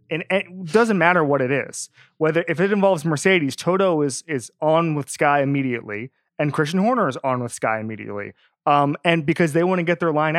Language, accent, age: English, American, 30-49